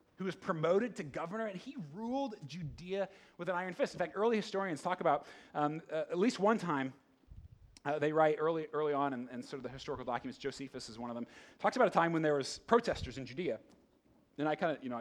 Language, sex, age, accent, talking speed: English, male, 30-49, American, 235 wpm